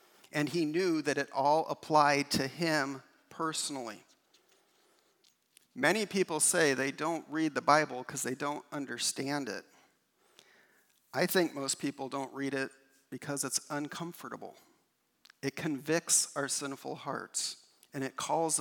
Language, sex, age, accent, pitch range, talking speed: English, male, 50-69, American, 140-160 Hz, 130 wpm